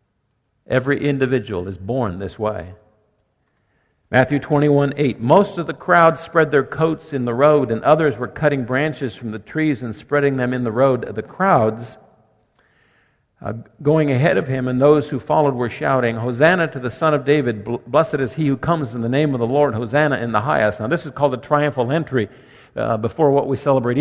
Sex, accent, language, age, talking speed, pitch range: male, American, English, 50-69, 195 wpm, 115-160 Hz